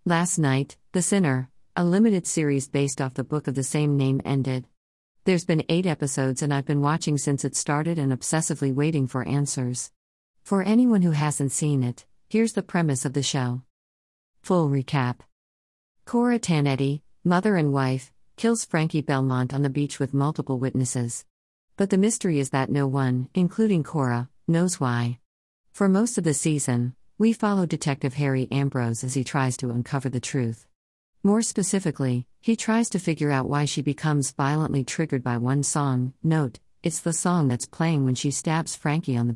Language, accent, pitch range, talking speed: English, American, 130-170 Hz, 175 wpm